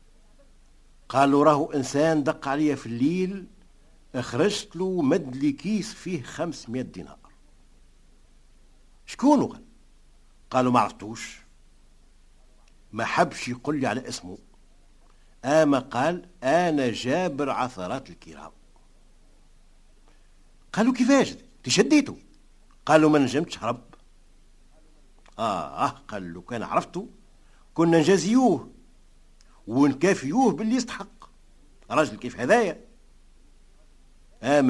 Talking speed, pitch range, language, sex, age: 90 wpm, 125-180 Hz, Arabic, male, 60-79